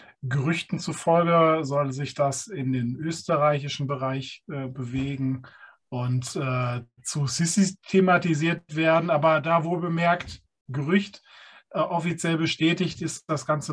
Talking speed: 120 wpm